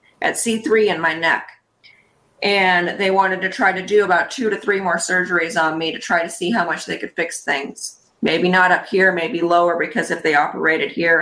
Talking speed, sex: 220 wpm, female